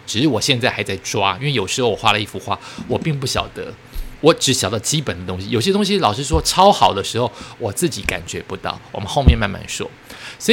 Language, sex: Chinese, male